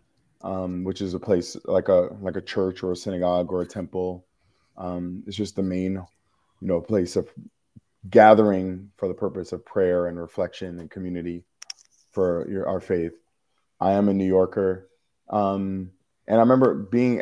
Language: English